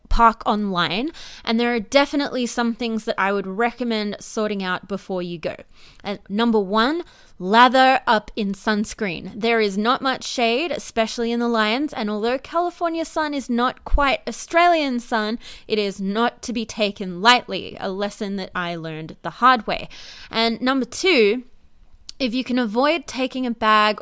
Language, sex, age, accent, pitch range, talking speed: English, female, 20-39, Australian, 205-260 Hz, 165 wpm